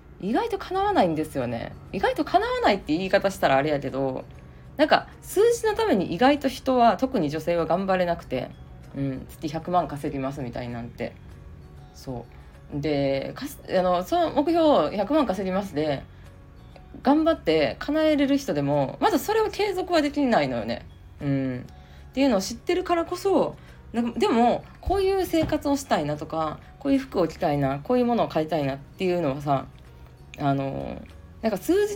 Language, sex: Japanese, female